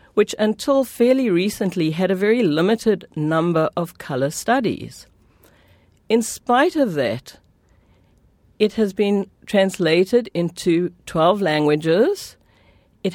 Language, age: English, 50-69